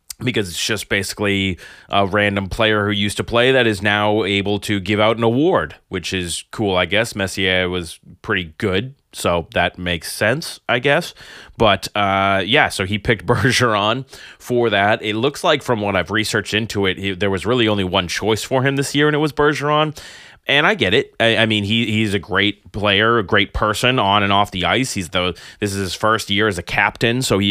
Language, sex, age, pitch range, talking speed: English, male, 20-39, 95-115 Hz, 215 wpm